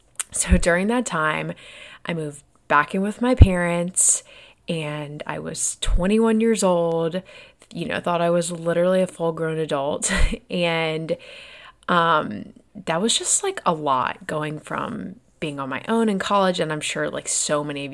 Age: 20-39